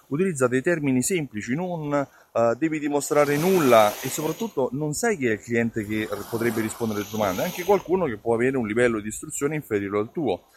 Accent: native